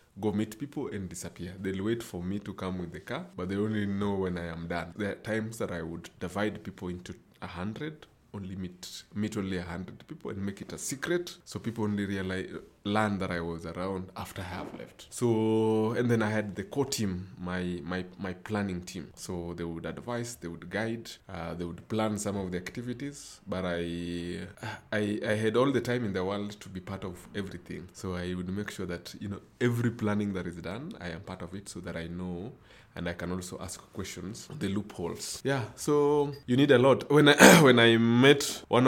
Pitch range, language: 90-110 Hz, English